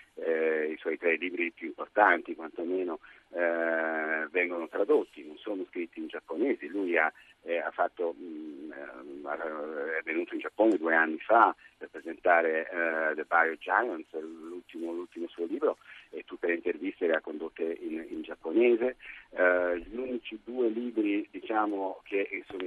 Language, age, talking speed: Italian, 50-69, 155 wpm